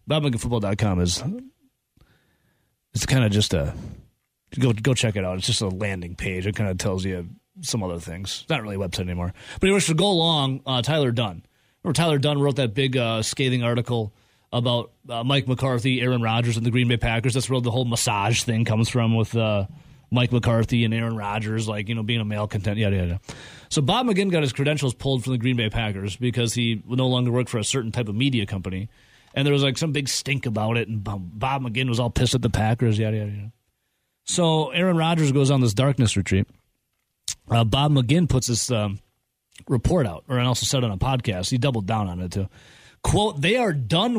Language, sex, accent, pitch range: English, male, American, 110-140 Hz